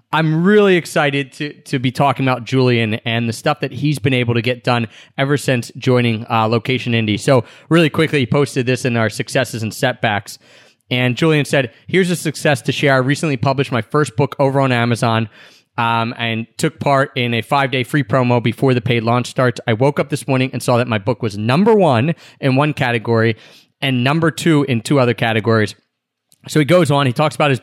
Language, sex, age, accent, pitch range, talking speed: English, male, 30-49, American, 125-155 Hz, 215 wpm